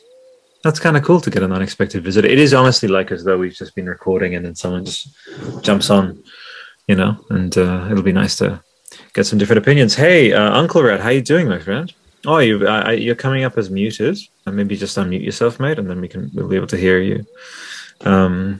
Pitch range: 95-120 Hz